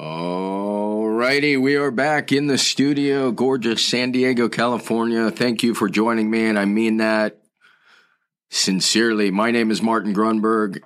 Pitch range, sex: 100-120 Hz, male